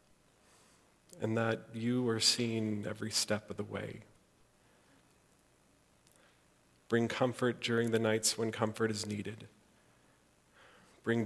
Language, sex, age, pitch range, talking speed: English, male, 40-59, 100-120 Hz, 105 wpm